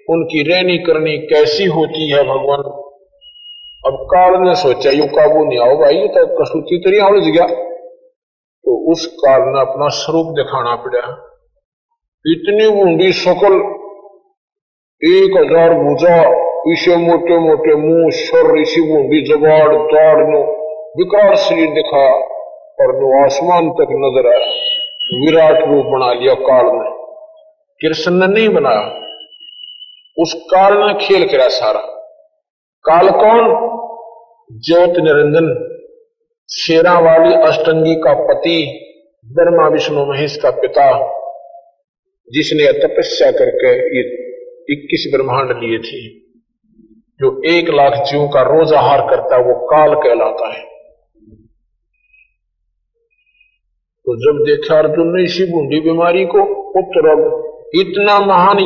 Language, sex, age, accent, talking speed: Hindi, male, 50-69, native, 110 wpm